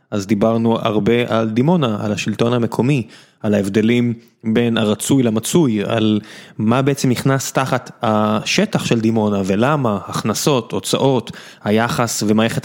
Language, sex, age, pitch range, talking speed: Hebrew, male, 20-39, 110-135 Hz, 125 wpm